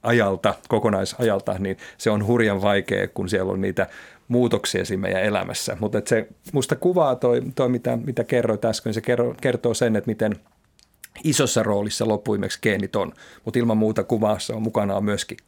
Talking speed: 165 wpm